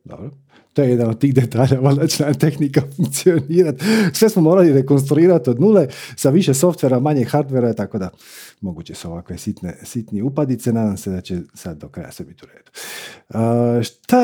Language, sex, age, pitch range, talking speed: Croatian, male, 50-69, 115-155 Hz, 175 wpm